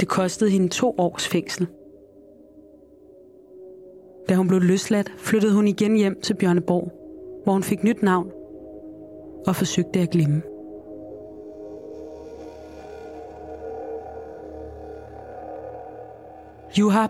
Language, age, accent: Danish, 20-39, native